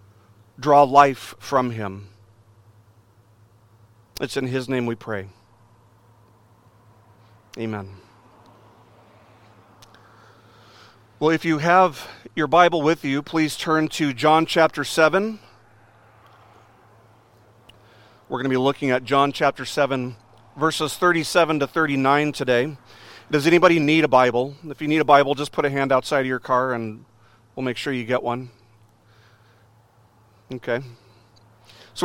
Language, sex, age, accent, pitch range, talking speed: English, male, 40-59, American, 115-150 Hz, 125 wpm